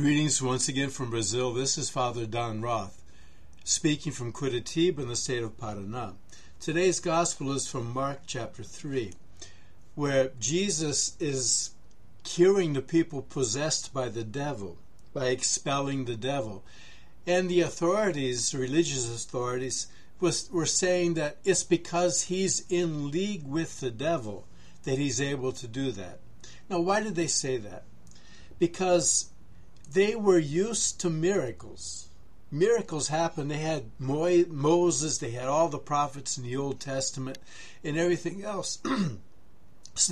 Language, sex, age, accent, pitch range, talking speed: English, male, 60-79, American, 120-170 Hz, 140 wpm